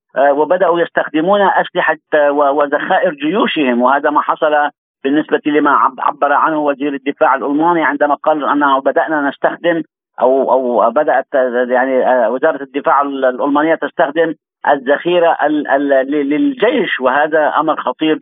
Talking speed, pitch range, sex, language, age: 110 wpm, 145-170 Hz, male, Arabic, 50-69